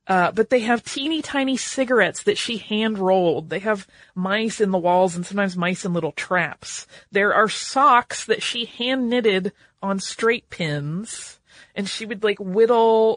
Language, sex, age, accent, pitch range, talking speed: English, female, 30-49, American, 175-230 Hz, 175 wpm